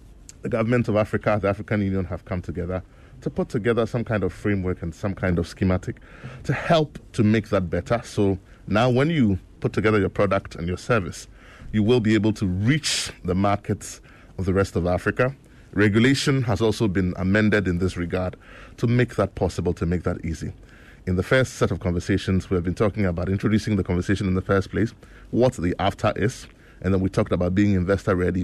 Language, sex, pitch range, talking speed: English, male, 90-115 Hz, 205 wpm